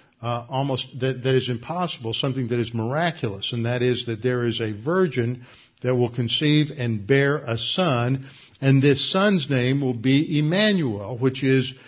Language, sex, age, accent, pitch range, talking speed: English, male, 60-79, American, 115-135 Hz, 170 wpm